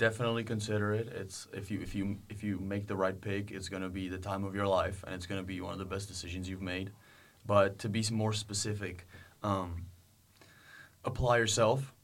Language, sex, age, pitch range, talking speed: Czech, male, 20-39, 95-105 Hz, 205 wpm